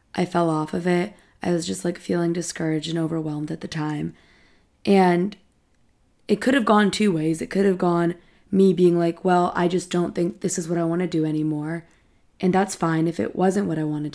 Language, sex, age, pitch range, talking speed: English, female, 20-39, 165-190 Hz, 220 wpm